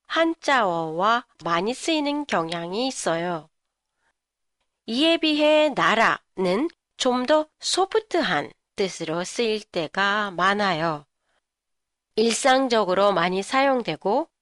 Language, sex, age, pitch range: Japanese, female, 40-59, 195-285 Hz